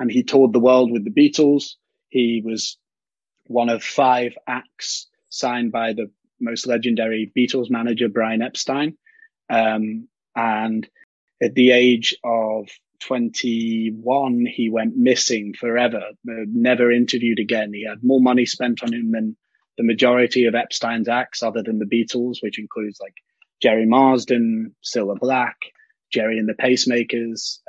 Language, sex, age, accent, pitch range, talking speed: English, male, 30-49, British, 110-125 Hz, 140 wpm